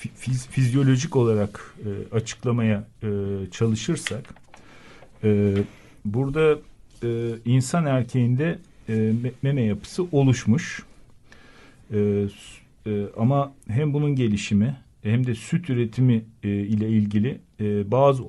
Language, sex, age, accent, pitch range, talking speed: Turkish, male, 50-69, native, 105-130 Hz, 100 wpm